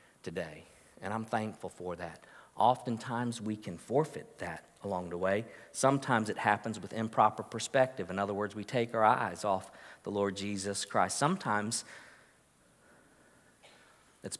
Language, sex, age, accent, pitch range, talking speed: English, male, 50-69, American, 100-115 Hz, 140 wpm